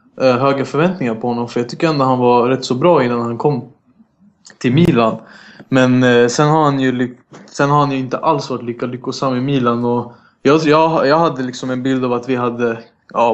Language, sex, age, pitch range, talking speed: Swedish, male, 20-39, 120-135 Hz, 210 wpm